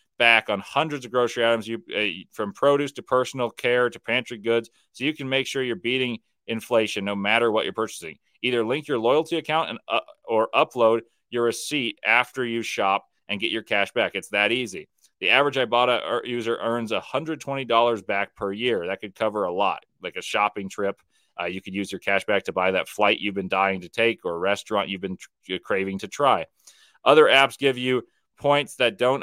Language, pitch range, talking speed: English, 105-125 Hz, 205 wpm